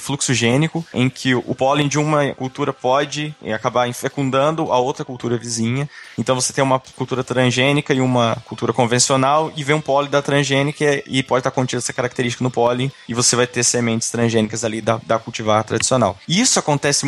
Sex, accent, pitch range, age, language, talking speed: male, Brazilian, 120-150 Hz, 20-39, Portuguese, 185 wpm